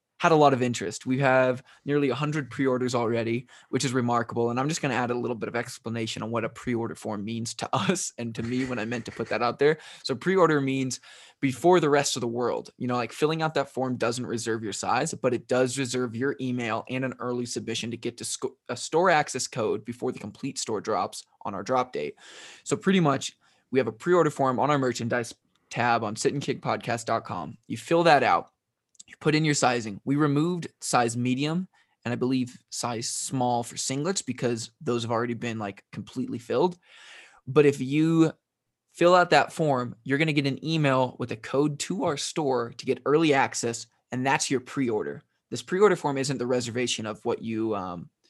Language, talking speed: English, 210 wpm